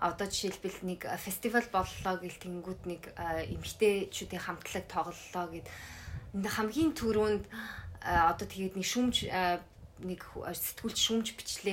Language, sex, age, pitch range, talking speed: Russian, female, 20-39, 180-220 Hz, 90 wpm